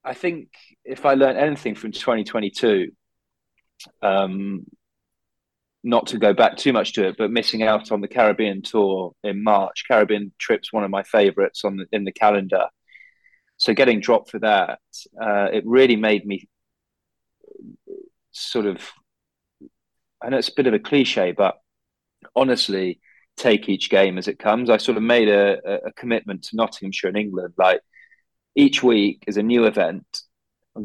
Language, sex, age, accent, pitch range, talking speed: English, male, 20-39, British, 100-130 Hz, 165 wpm